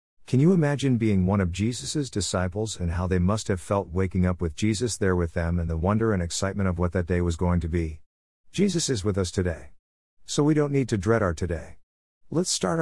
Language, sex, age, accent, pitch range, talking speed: English, male, 50-69, American, 90-120 Hz, 230 wpm